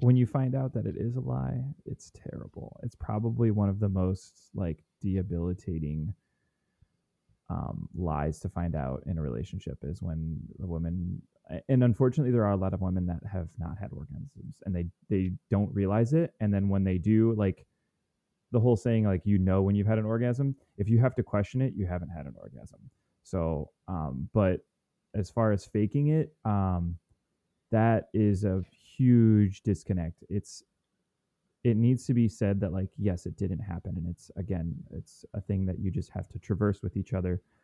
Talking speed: 190 wpm